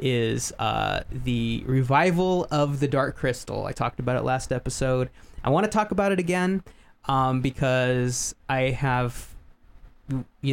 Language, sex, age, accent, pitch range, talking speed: English, male, 20-39, American, 120-150 Hz, 150 wpm